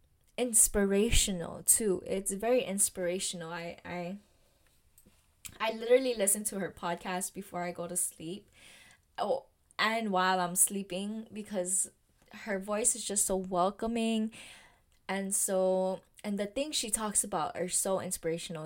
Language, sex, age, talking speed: English, female, 10-29, 130 wpm